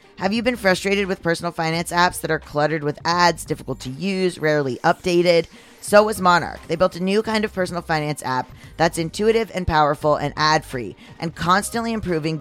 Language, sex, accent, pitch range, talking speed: English, female, American, 150-190 Hz, 190 wpm